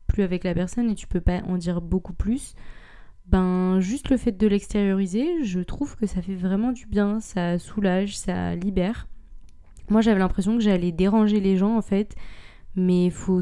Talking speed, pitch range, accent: 185 wpm, 175-205 Hz, French